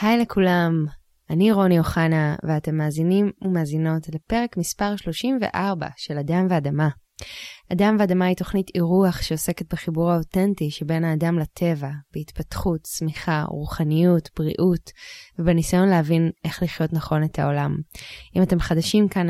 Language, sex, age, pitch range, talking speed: Hebrew, female, 20-39, 160-190 Hz, 125 wpm